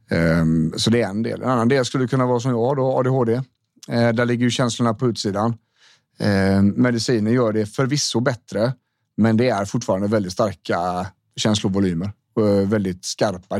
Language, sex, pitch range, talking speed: Swedish, male, 100-125 Hz, 160 wpm